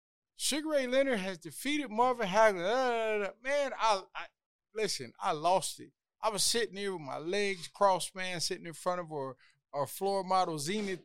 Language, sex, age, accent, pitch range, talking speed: English, male, 30-49, American, 160-220 Hz, 175 wpm